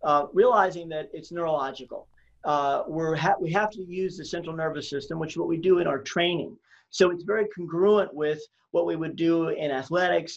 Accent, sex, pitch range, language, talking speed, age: American, male, 160-190 Hz, English, 190 wpm, 40-59